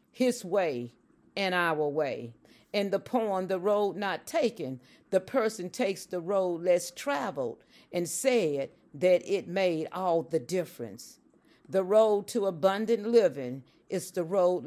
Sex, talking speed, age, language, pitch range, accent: female, 145 wpm, 50-69, English, 165-215 Hz, American